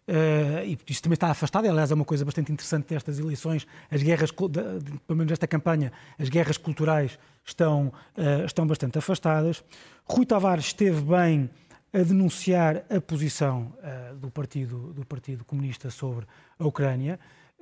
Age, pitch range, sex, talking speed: 20-39, 145-190 Hz, male, 140 wpm